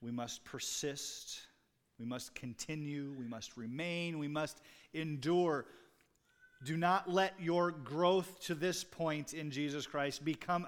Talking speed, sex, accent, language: 135 wpm, male, American, English